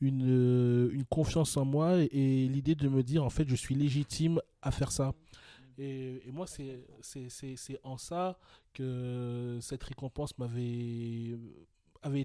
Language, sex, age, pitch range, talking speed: French, male, 20-39, 115-135 Hz, 160 wpm